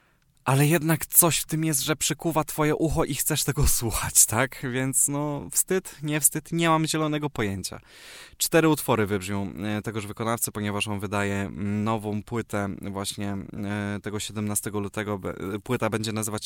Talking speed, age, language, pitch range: 150 wpm, 20-39, Polish, 105-130 Hz